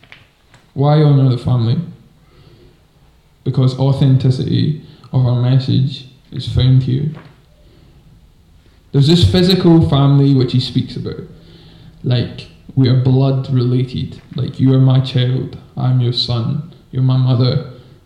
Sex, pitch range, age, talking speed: male, 130-150 Hz, 10-29, 120 wpm